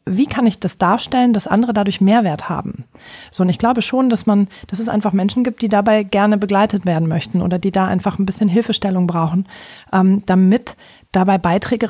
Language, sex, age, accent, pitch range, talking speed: German, female, 40-59, German, 190-225 Hz, 200 wpm